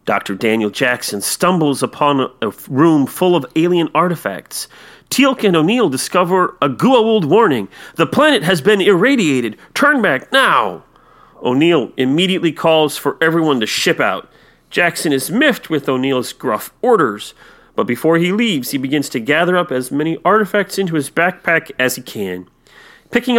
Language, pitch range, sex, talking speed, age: English, 145-215 Hz, male, 155 wpm, 40-59